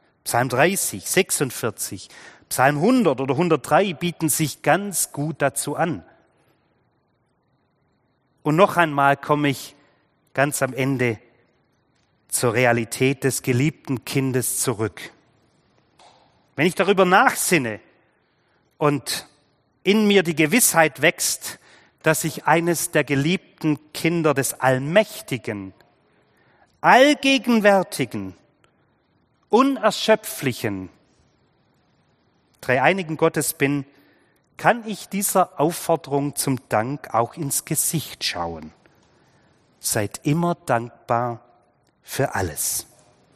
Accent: German